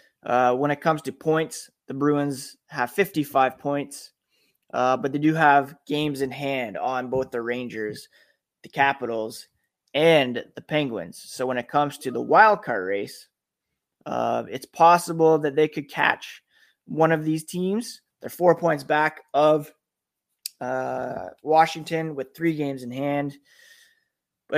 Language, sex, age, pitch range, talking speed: English, male, 20-39, 135-160 Hz, 150 wpm